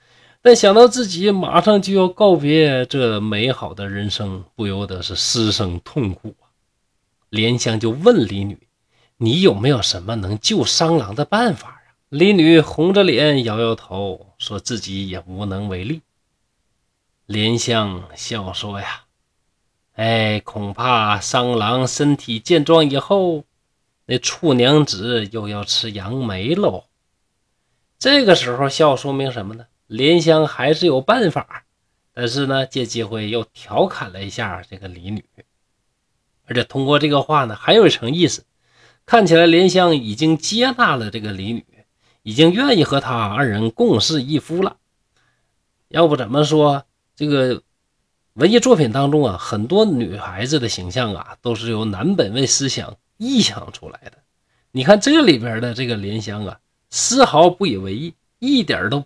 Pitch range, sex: 105-155 Hz, male